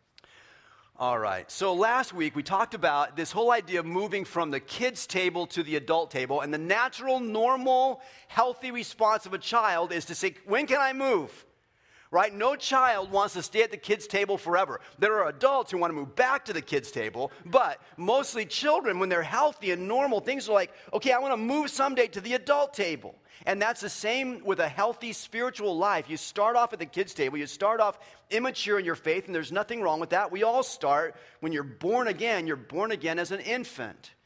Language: English